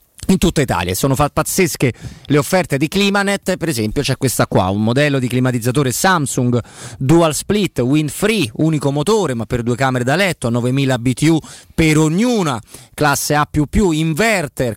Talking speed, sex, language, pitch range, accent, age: 160 wpm, male, Italian, 125-165 Hz, native, 30-49